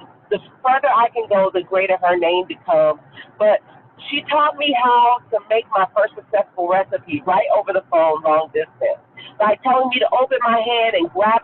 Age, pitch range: 40-59, 185-245 Hz